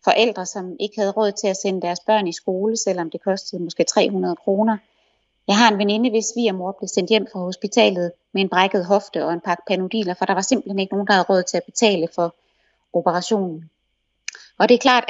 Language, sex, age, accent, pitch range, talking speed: Danish, female, 30-49, native, 190-230 Hz, 225 wpm